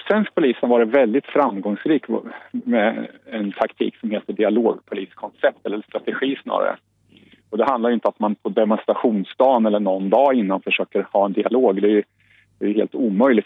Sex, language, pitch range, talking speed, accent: male, Swedish, 100-130 Hz, 155 wpm, Norwegian